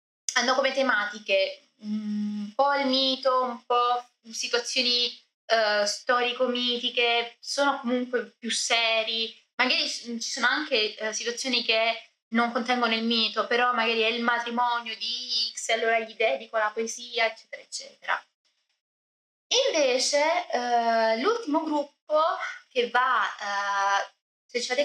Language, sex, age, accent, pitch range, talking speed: Italian, female, 20-39, native, 210-265 Hz, 125 wpm